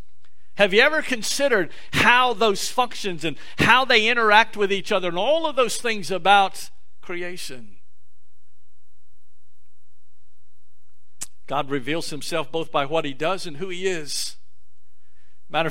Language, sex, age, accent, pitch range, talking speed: English, male, 50-69, American, 135-190 Hz, 130 wpm